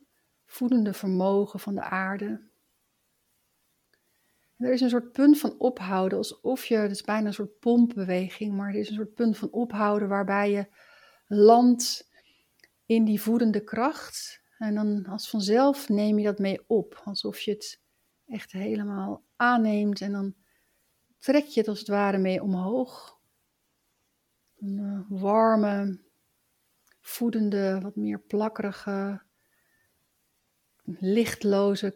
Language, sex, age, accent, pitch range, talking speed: Dutch, female, 60-79, Dutch, 195-225 Hz, 125 wpm